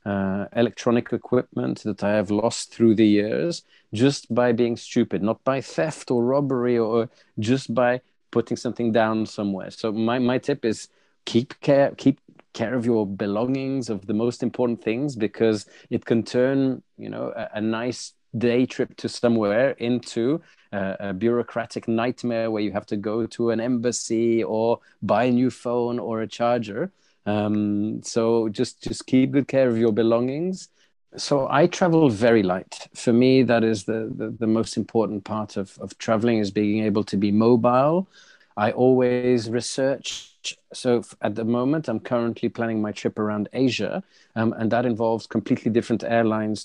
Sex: male